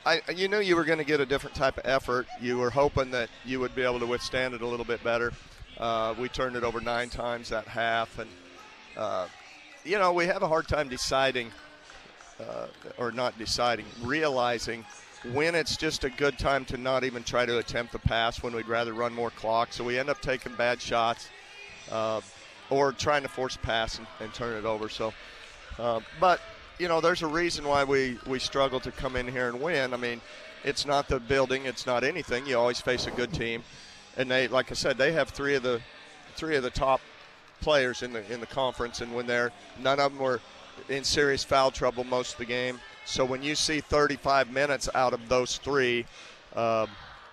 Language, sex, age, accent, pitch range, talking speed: English, male, 40-59, American, 120-135 Hz, 215 wpm